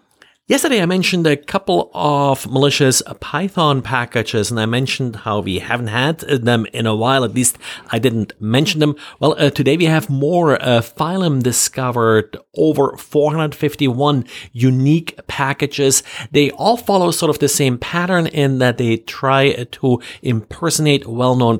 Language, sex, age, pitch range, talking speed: English, male, 50-69, 120-150 Hz, 150 wpm